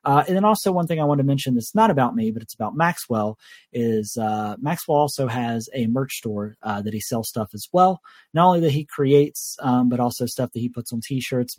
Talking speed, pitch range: 245 wpm, 115-145 Hz